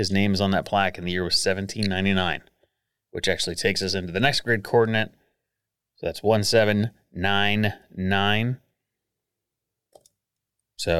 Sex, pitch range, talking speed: male, 95-125 Hz, 130 wpm